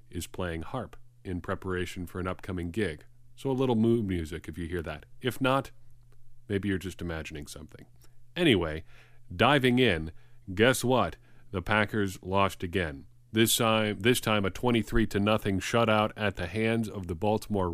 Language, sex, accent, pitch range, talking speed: English, male, American, 90-120 Hz, 165 wpm